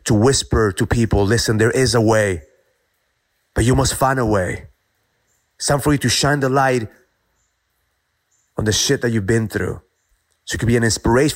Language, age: English, 30-49